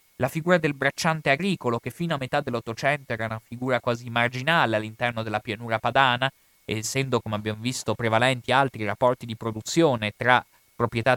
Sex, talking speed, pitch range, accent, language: male, 160 wpm, 120-175 Hz, native, Italian